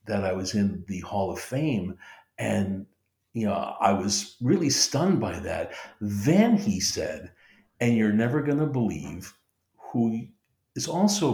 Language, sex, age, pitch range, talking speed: English, male, 60-79, 105-145 Hz, 155 wpm